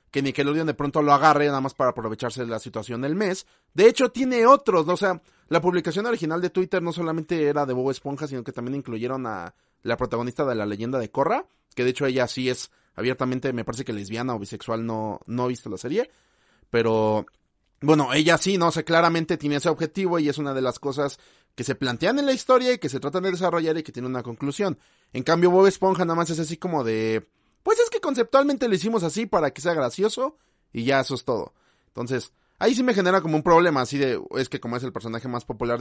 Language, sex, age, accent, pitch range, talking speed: Spanish, male, 30-49, Mexican, 125-175 Hz, 240 wpm